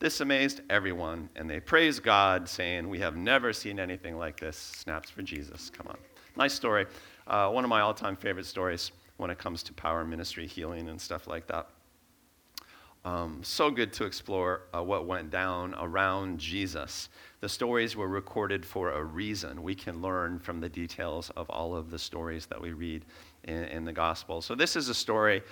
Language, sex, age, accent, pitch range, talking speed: English, male, 50-69, American, 85-95 Hz, 190 wpm